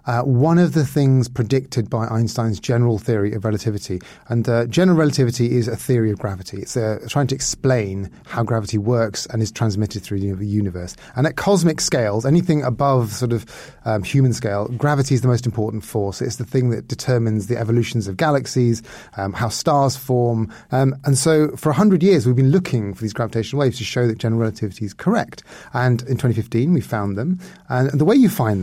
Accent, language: British, English